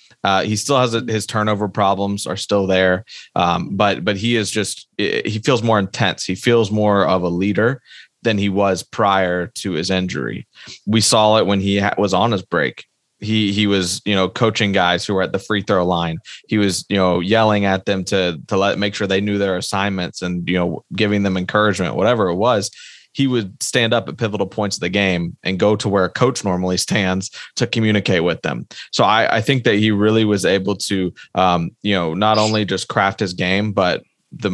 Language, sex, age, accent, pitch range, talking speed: English, male, 20-39, American, 90-105 Hz, 215 wpm